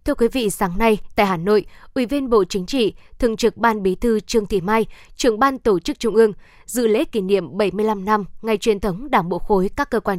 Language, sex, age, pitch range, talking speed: Vietnamese, female, 20-39, 200-240 Hz, 245 wpm